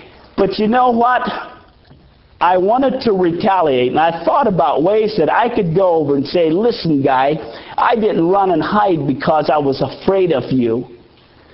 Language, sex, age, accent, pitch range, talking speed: English, male, 50-69, American, 175-240 Hz, 170 wpm